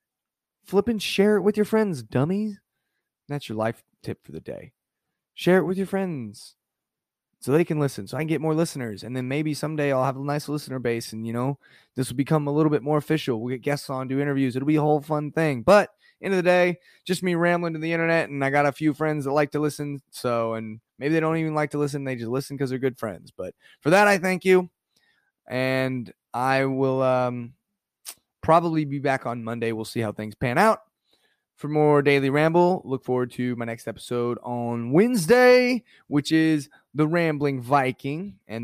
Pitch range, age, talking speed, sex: 120-155 Hz, 20-39, 215 wpm, male